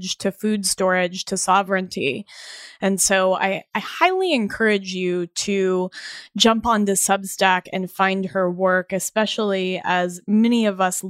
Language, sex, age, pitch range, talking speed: English, female, 20-39, 185-210 Hz, 135 wpm